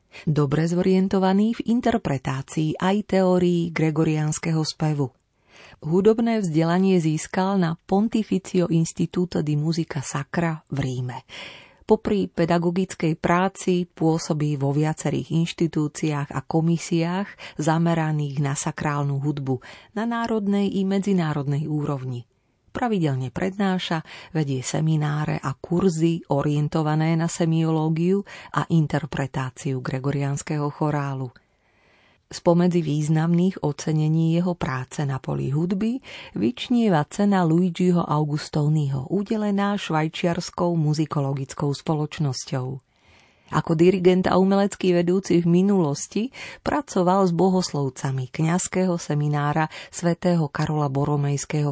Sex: female